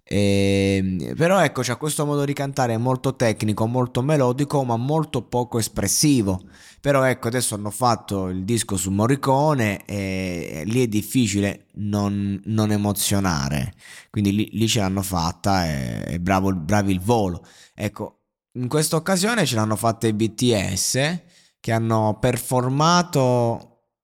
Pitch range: 100-125 Hz